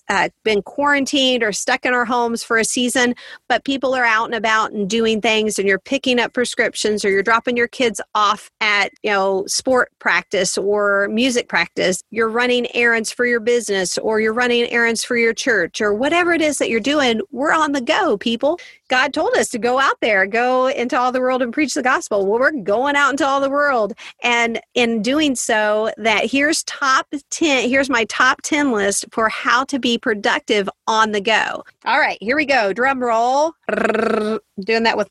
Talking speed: 205 wpm